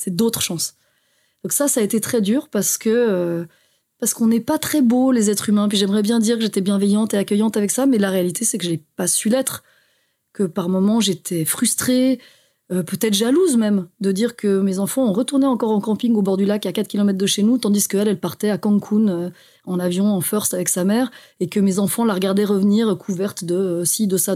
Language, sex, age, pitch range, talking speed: French, female, 30-49, 195-240 Hz, 245 wpm